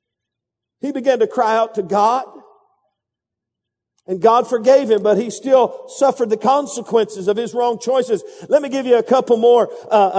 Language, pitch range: English, 225-290 Hz